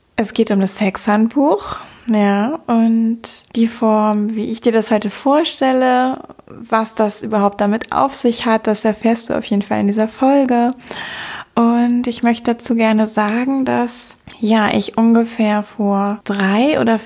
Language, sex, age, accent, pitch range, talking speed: German, female, 20-39, German, 205-240 Hz, 155 wpm